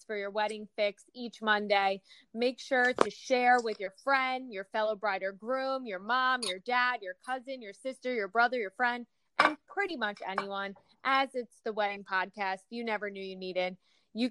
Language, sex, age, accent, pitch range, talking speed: English, female, 20-39, American, 200-245 Hz, 190 wpm